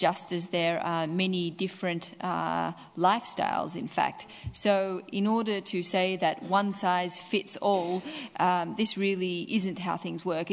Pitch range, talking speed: 175-205 Hz, 155 wpm